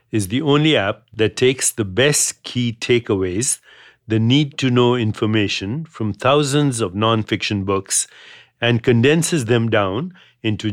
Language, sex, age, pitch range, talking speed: English, male, 60-79, 110-130 Hz, 130 wpm